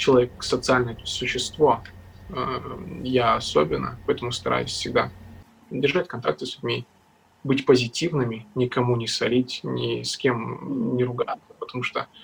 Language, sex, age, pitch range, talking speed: Russian, male, 20-39, 95-130 Hz, 125 wpm